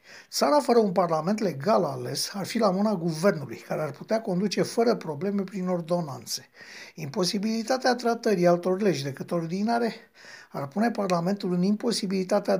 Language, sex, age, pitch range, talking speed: Romanian, male, 60-79, 170-225 Hz, 145 wpm